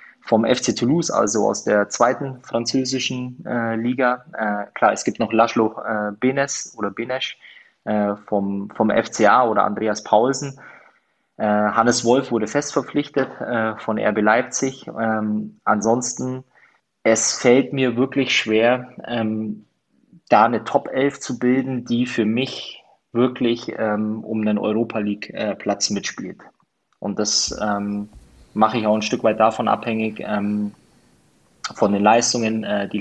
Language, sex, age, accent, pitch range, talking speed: German, male, 20-39, German, 105-120 Hz, 140 wpm